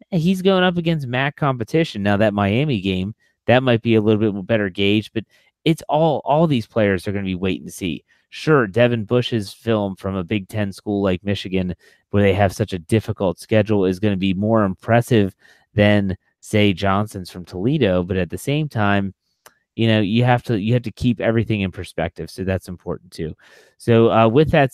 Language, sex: English, male